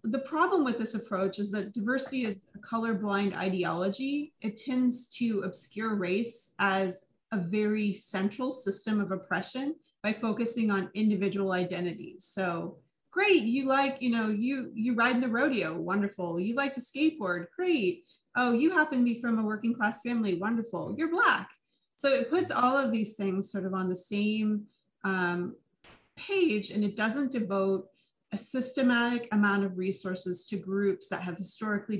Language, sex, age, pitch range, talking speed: English, female, 30-49, 190-240 Hz, 165 wpm